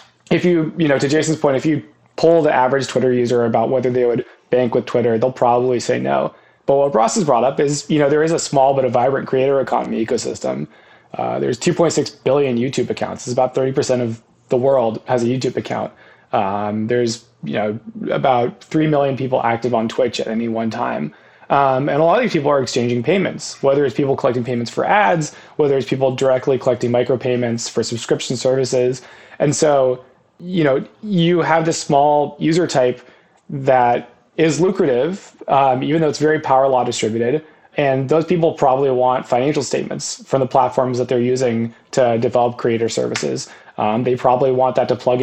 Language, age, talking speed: English, 20-39, 195 wpm